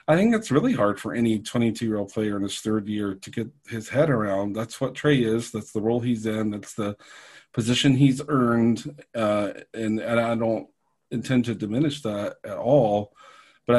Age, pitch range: 40-59, 110-130 Hz